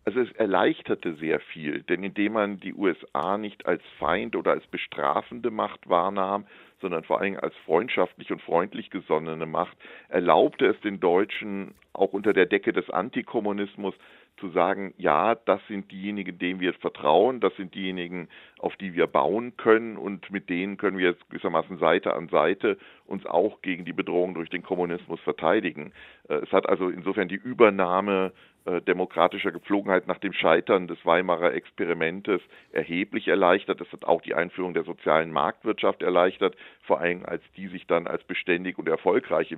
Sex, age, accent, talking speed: male, 50-69, German, 165 wpm